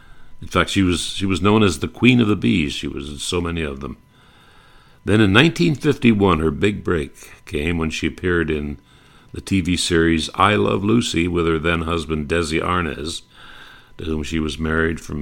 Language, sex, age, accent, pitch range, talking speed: English, male, 60-79, American, 80-100 Hz, 195 wpm